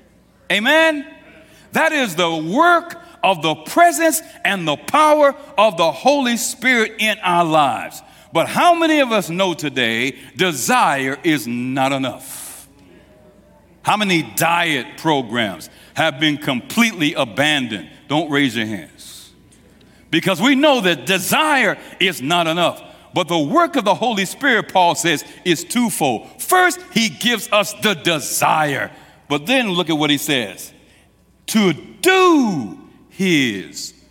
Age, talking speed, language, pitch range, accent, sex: 60-79, 135 wpm, English, 145-240 Hz, American, male